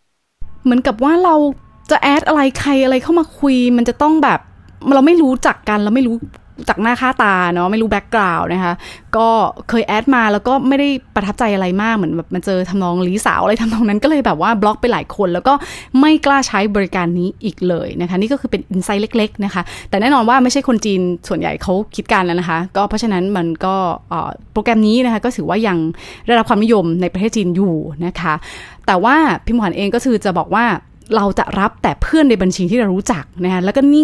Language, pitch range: Thai, 185-250 Hz